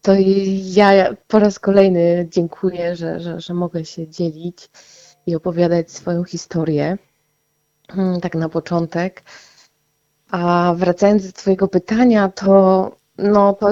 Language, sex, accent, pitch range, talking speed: Polish, female, native, 170-190 Hz, 115 wpm